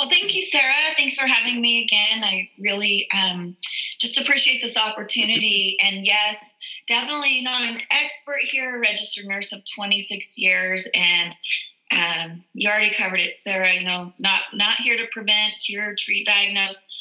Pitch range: 195-230 Hz